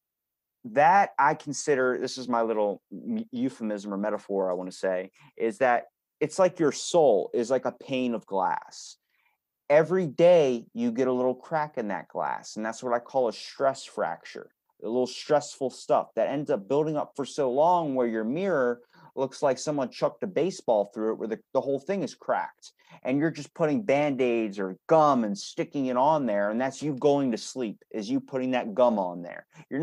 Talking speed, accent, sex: 200 wpm, American, male